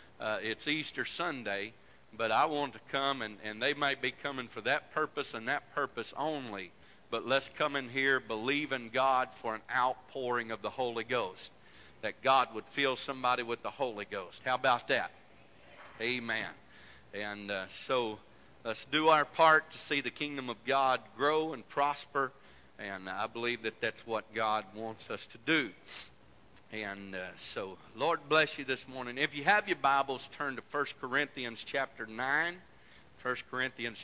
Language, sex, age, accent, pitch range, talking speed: English, male, 50-69, American, 110-135 Hz, 175 wpm